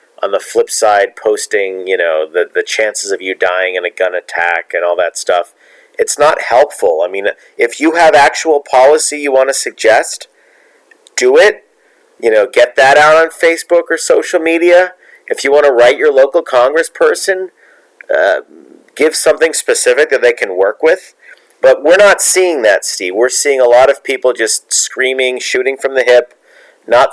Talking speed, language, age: 185 wpm, English, 40-59